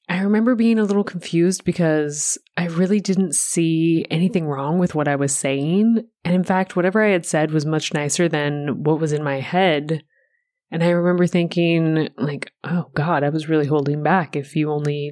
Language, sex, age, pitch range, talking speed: English, female, 20-39, 150-180 Hz, 195 wpm